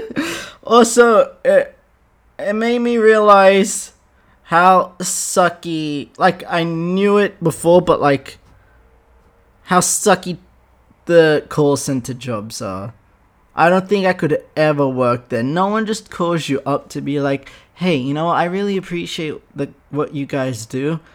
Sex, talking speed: male, 140 wpm